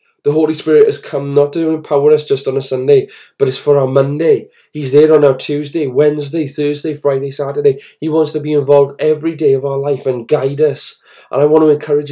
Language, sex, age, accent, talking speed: English, male, 20-39, British, 225 wpm